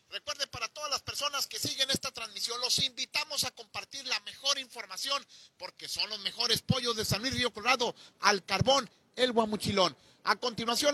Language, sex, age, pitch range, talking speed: Spanish, male, 40-59, 200-250 Hz, 175 wpm